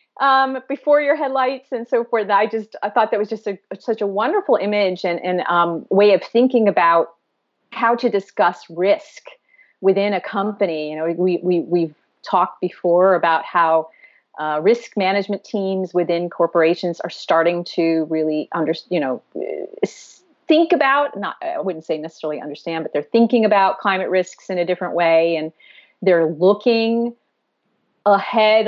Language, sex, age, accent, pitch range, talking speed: English, female, 40-59, American, 165-210 Hz, 155 wpm